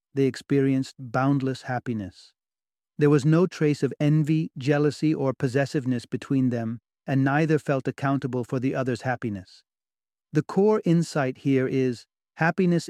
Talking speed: 135 wpm